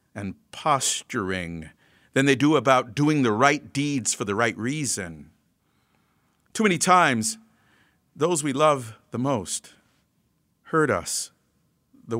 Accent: American